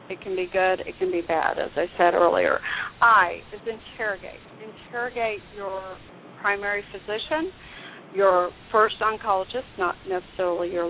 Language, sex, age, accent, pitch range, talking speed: English, female, 40-59, American, 185-240 Hz, 140 wpm